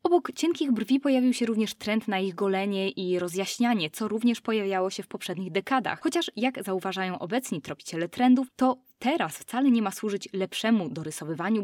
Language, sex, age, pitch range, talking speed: Polish, female, 20-39, 185-255 Hz, 170 wpm